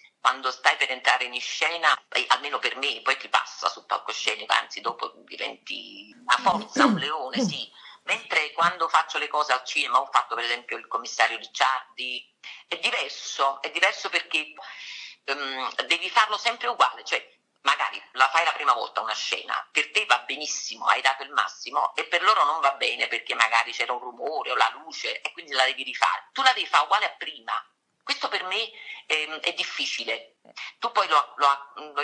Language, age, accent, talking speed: Italian, 40-59, native, 185 wpm